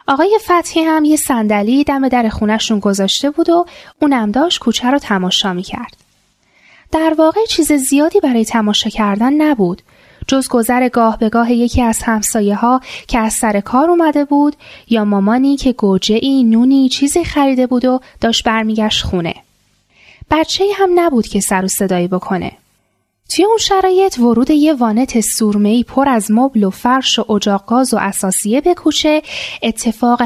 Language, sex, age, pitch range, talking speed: Persian, female, 10-29, 215-295 Hz, 155 wpm